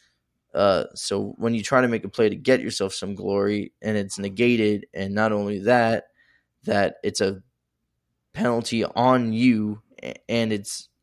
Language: English